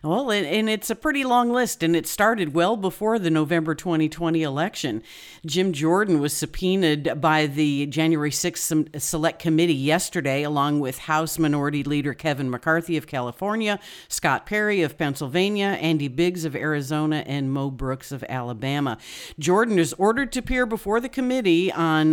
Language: English